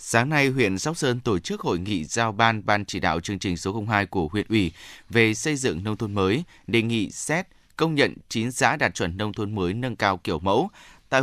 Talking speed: 235 wpm